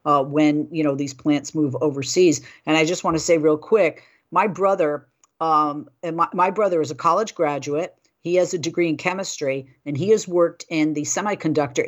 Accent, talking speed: American, 200 wpm